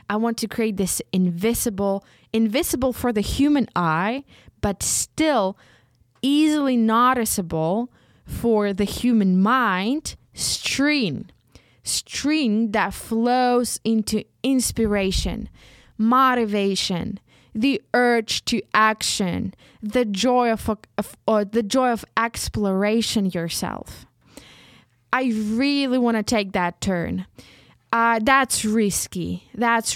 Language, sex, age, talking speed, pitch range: English, female, 20-39, 100 wpm, 195-240 Hz